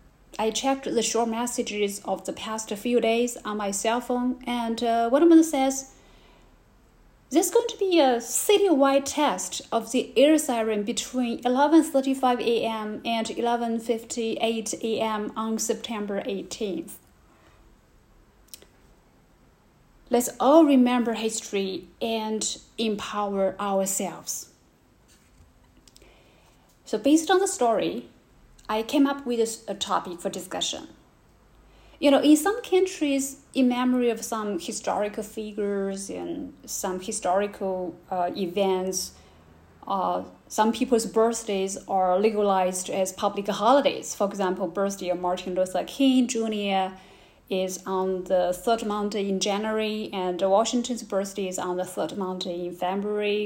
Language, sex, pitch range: Chinese, female, 195-245 Hz